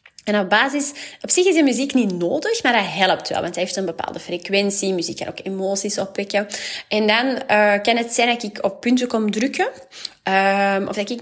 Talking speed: 225 wpm